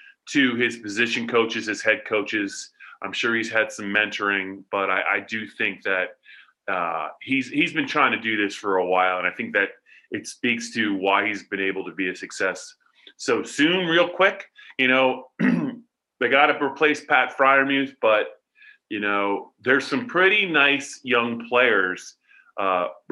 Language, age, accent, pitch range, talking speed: English, 30-49, American, 110-150 Hz, 175 wpm